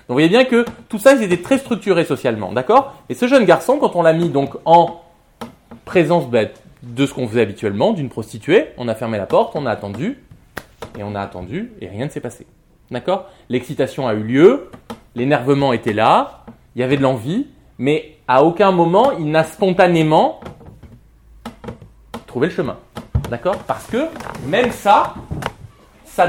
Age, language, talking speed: 20-39, French, 175 wpm